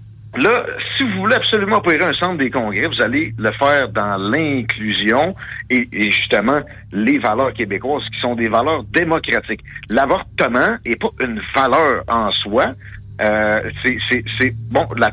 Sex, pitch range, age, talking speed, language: male, 110-125 Hz, 60-79, 150 wpm, French